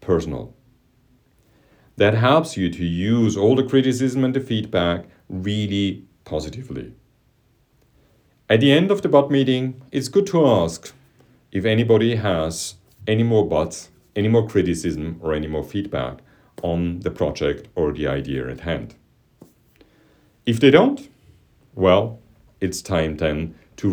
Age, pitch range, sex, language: 40-59, 85-115 Hz, male, English